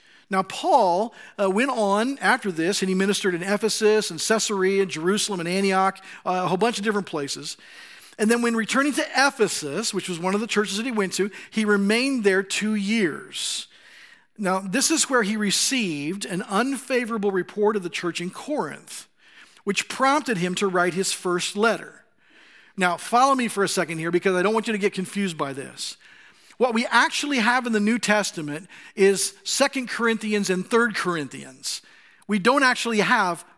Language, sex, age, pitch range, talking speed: English, male, 50-69, 190-235 Hz, 185 wpm